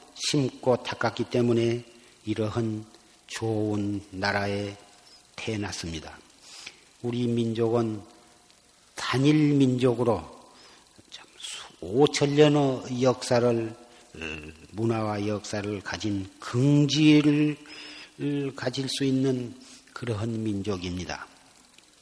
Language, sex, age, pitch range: Korean, male, 40-59, 110-130 Hz